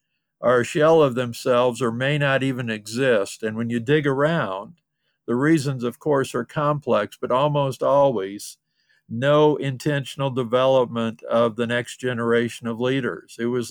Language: English